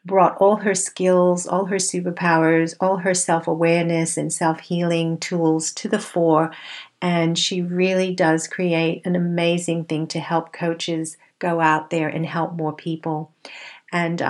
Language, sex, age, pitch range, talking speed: English, female, 50-69, 165-185 Hz, 145 wpm